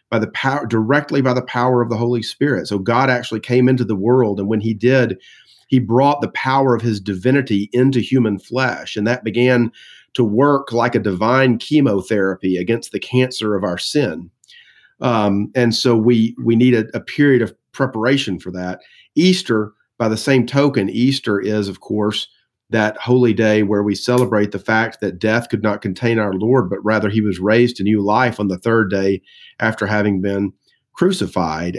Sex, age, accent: male, 40-59, American